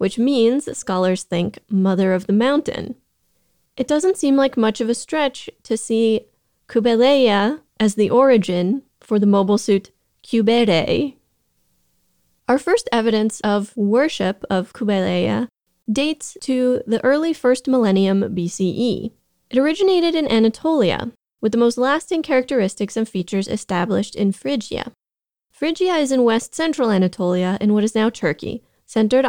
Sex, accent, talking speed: female, American, 135 wpm